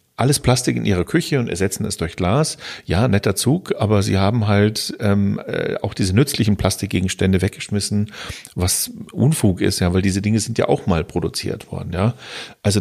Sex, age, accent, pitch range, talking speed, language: male, 40-59, German, 90-115 Hz, 180 wpm, German